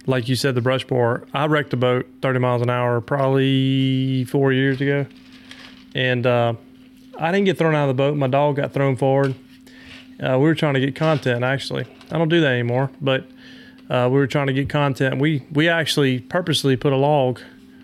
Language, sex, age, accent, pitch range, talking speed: English, male, 30-49, American, 130-165 Hz, 205 wpm